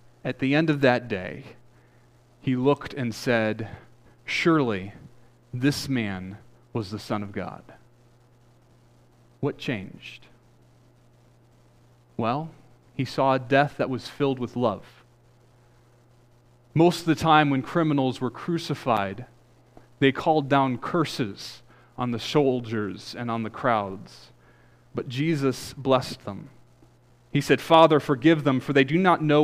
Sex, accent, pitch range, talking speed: male, American, 115-155 Hz, 130 wpm